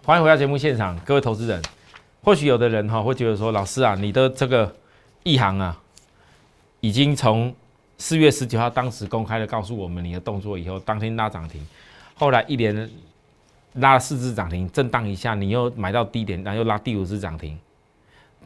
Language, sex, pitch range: Chinese, male, 100-150 Hz